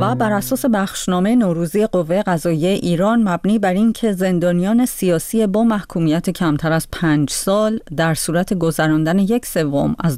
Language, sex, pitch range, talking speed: Persian, female, 155-200 Hz, 145 wpm